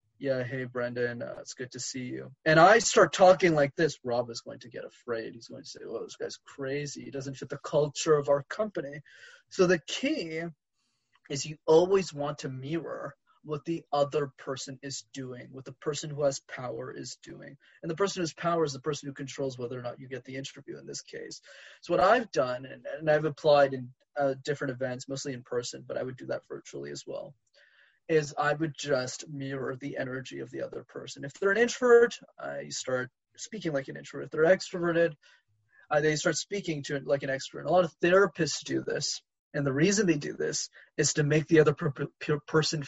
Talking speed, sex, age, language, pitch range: 215 wpm, male, 20-39, English, 135-160 Hz